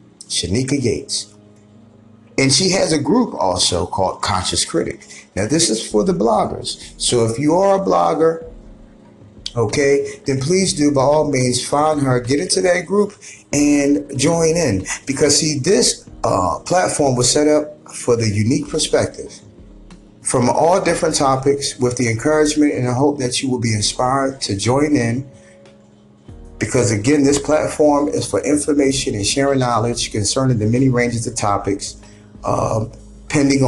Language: English